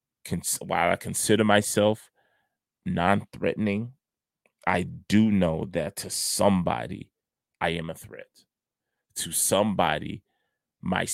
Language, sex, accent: English, male, American